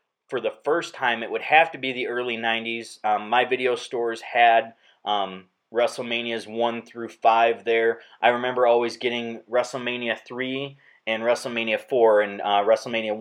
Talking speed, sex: 160 wpm, male